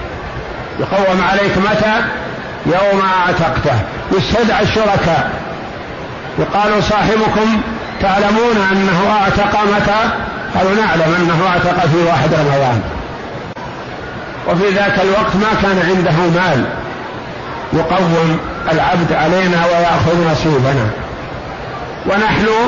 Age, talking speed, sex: 50-69, 85 wpm, male